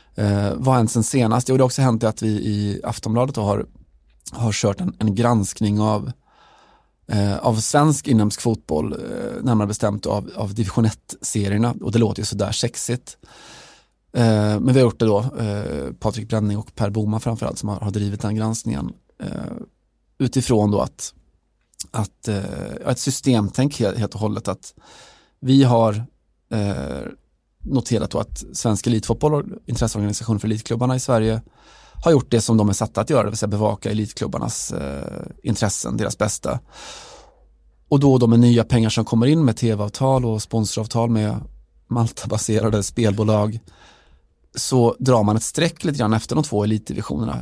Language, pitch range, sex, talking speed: Swedish, 105-120 Hz, male, 170 wpm